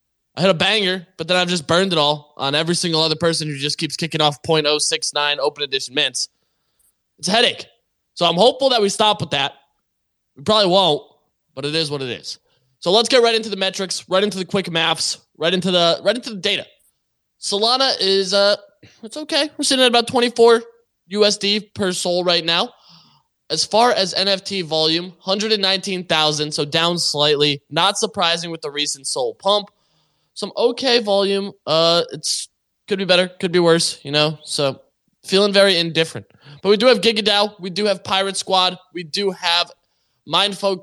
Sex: male